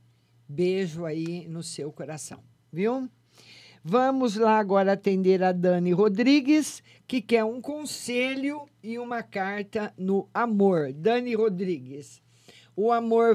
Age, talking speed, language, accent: 50-69, 115 wpm, Portuguese, Brazilian